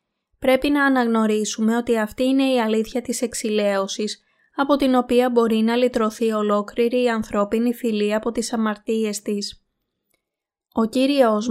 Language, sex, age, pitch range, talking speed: Greek, female, 20-39, 215-255 Hz, 135 wpm